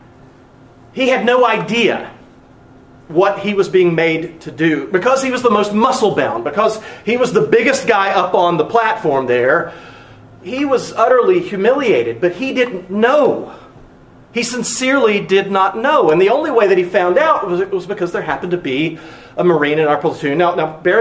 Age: 40-59